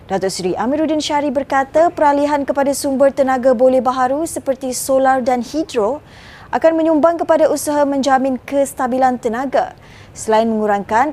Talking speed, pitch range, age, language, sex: 130 wpm, 230-290 Hz, 20-39, Malay, female